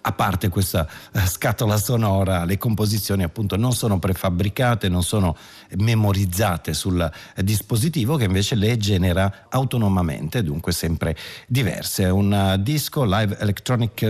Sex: male